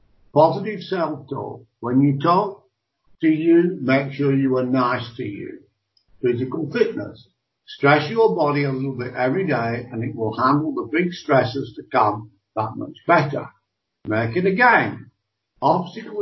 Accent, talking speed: American, 150 wpm